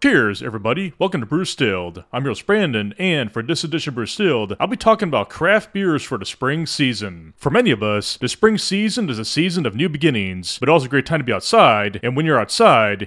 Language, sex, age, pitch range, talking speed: English, male, 30-49, 110-165 Hz, 235 wpm